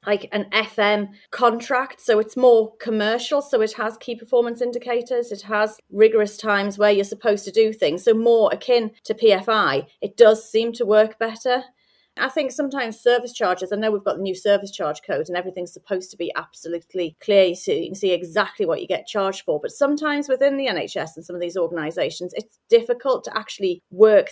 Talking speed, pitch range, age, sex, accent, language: 200 wpm, 190-235 Hz, 30-49, female, British, English